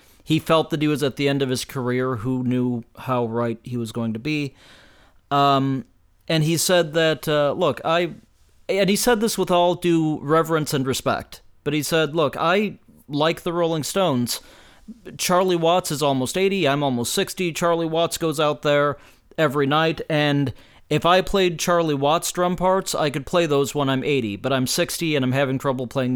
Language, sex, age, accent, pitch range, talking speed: English, male, 40-59, American, 120-160 Hz, 195 wpm